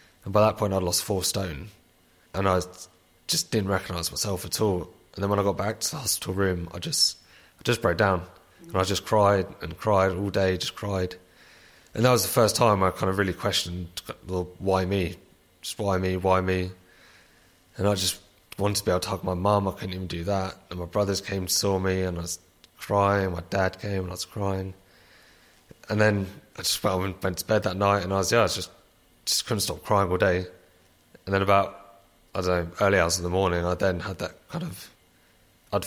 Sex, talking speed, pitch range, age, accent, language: male, 225 wpm, 90-100 Hz, 30-49, British, English